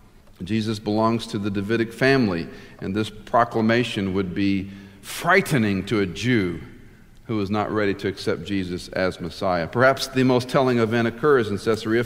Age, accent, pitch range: 50-69, American, 110-140 Hz